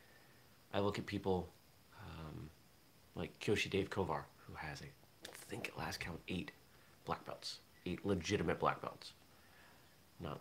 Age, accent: 30-49, American